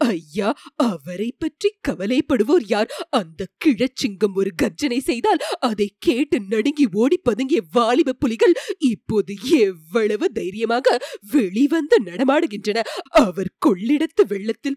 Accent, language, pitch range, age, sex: native, Tamil, 210-300 Hz, 30-49, female